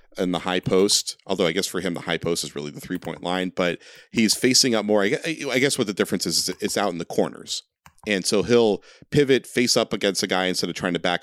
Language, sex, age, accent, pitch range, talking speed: English, male, 40-59, American, 90-115 Hz, 255 wpm